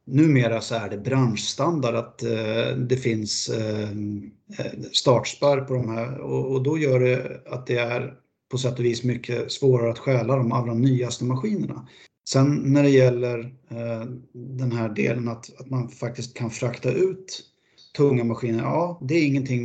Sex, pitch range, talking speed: male, 115-130 Hz, 155 wpm